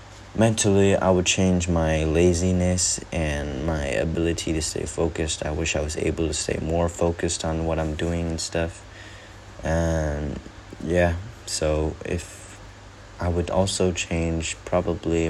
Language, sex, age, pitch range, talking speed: English, male, 20-39, 80-100 Hz, 140 wpm